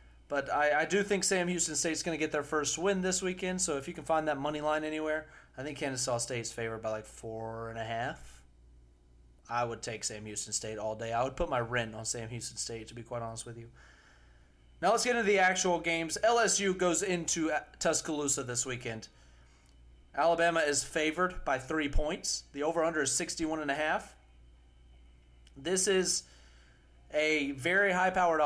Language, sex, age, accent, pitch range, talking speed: English, male, 30-49, American, 110-170 Hz, 195 wpm